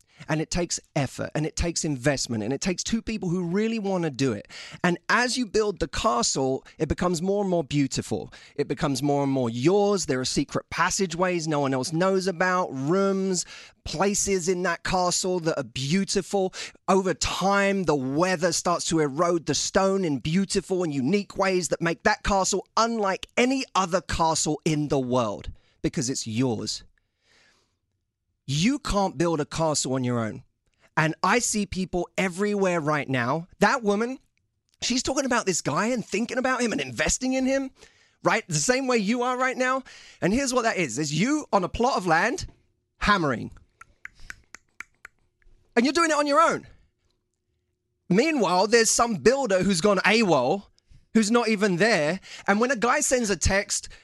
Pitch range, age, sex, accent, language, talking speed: 150-210 Hz, 30-49, male, British, English, 175 wpm